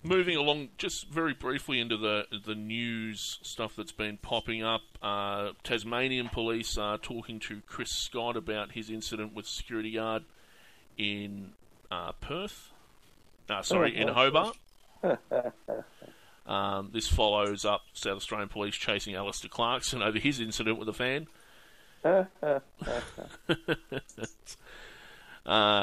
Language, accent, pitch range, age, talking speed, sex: English, Australian, 105-115 Hz, 30-49, 120 wpm, male